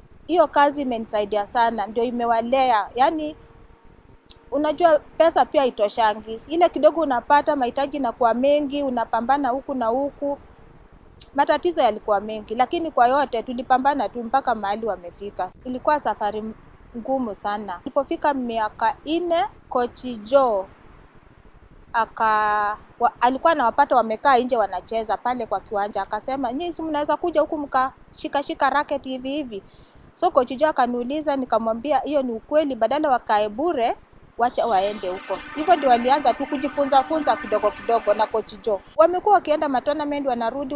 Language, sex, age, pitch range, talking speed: Swahili, female, 30-49, 220-285 Hz, 130 wpm